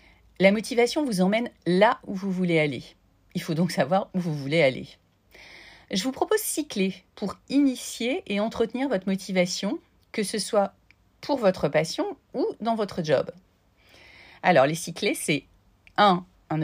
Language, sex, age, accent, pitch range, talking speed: French, female, 40-59, French, 145-200 Hz, 160 wpm